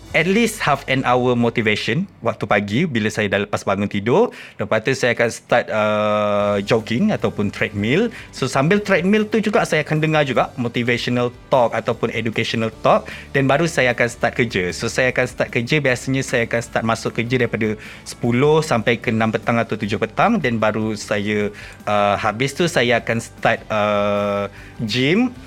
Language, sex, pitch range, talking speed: Malay, male, 110-130 Hz, 175 wpm